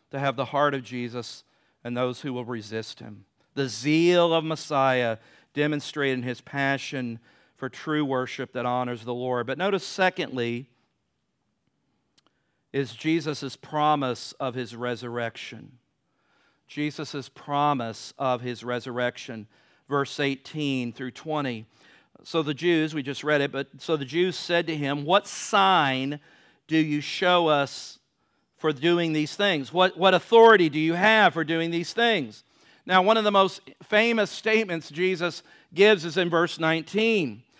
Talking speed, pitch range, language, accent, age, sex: 145 wpm, 135-180 Hz, English, American, 50-69, male